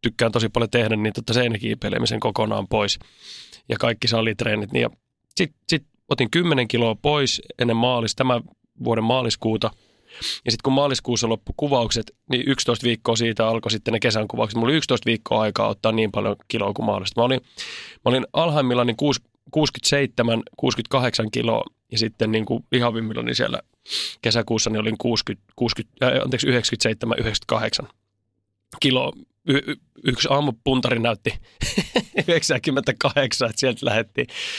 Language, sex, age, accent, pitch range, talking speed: Finnish, male, 20-39, native, 110-125 Hz, 130 wpm